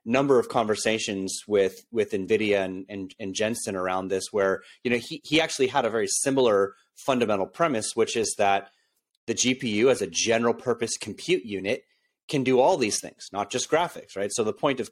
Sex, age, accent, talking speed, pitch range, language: male, 30-49, American, 195 wpm, 100-125 Hz, English